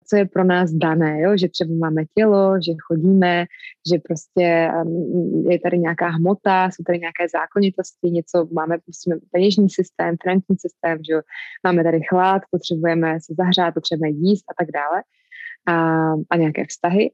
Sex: female